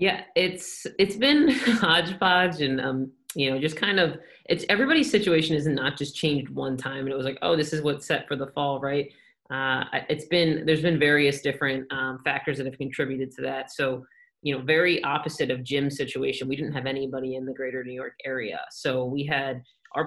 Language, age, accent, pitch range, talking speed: English, 30-49, American, 135-155 Hz, 210 wpm